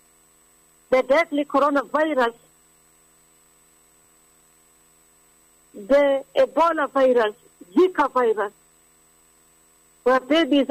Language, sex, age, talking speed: English, female, 60-79, 55 wpm